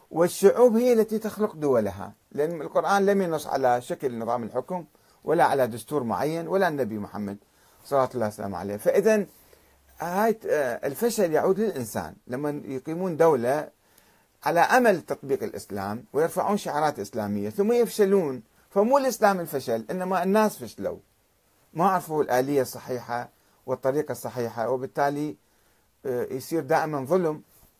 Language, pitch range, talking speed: Arabic, 125-190 Hz, 120 wpm